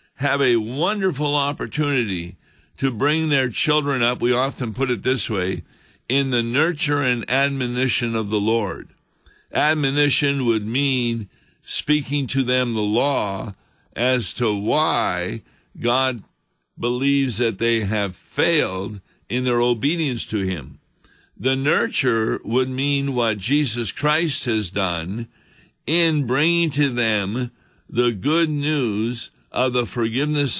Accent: American